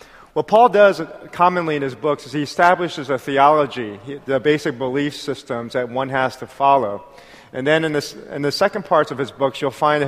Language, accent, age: Korean, American, 30-49